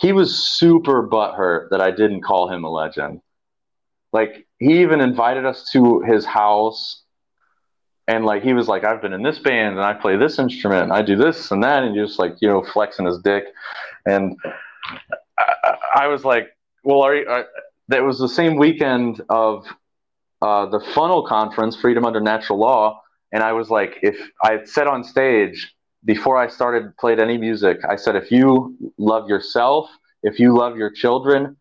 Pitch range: 110-150 Hz